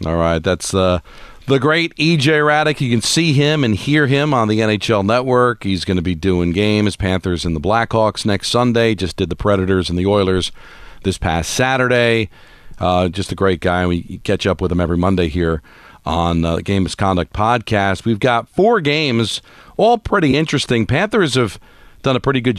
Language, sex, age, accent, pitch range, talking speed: English, male, 40-59, American, 95-120 Hz, 195 wpm